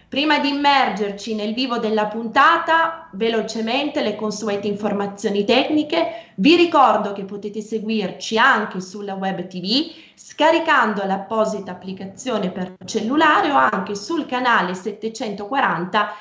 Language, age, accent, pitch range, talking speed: Italian, 20-39, native, 190-230 Hz, 115 wpm